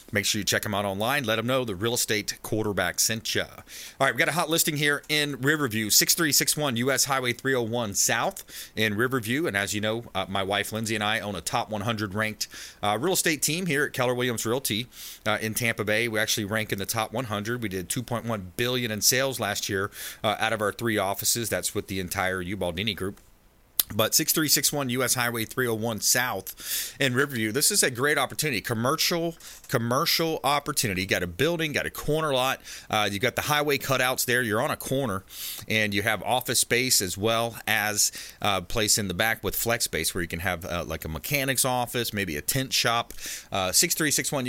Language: English